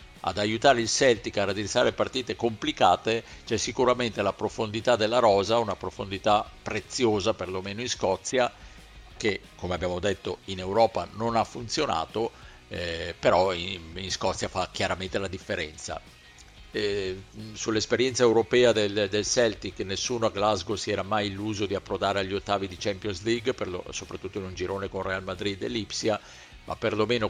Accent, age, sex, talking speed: native, 50-69, male, 155 wpm